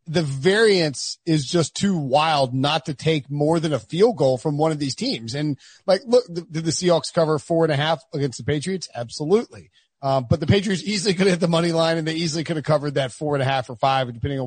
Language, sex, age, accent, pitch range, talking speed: English, male, 30-49, American, 145-190 Hz, 250 wpm